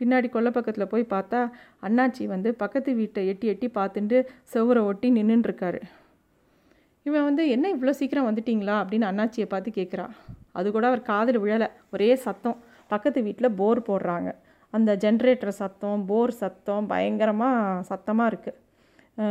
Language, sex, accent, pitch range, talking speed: Tamil, female, native, 200-245 Hz, 135 wpm